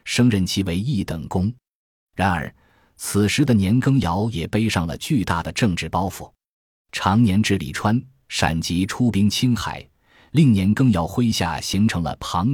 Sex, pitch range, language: male, 85-115 Hz, Chinese